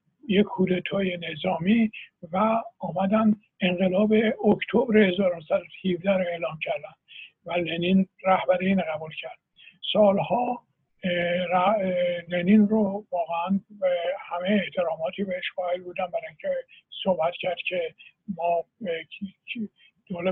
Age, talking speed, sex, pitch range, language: 60-79, 90 wpm, male, 170-195 Hz, Persian